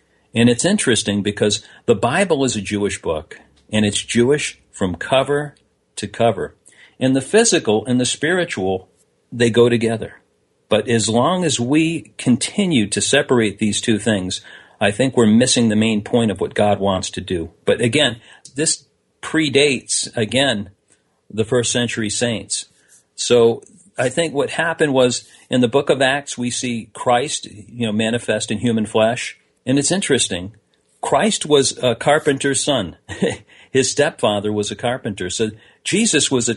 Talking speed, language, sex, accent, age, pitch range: 160 wpm, English, male, American, 50-69, 105-130 Hz